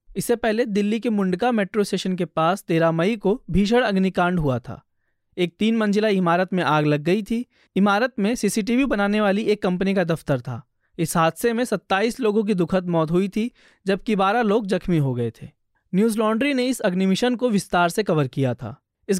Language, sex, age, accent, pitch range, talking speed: Hindi, male, 20-39, native, 170-225 Hz, 200 wpm